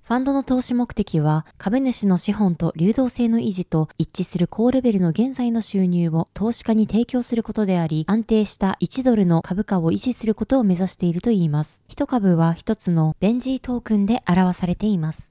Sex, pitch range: female, 175-240 Hz